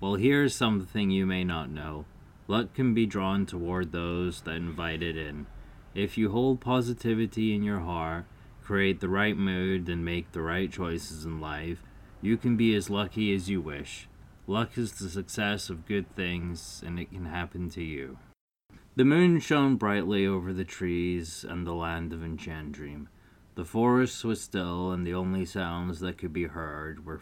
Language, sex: English, male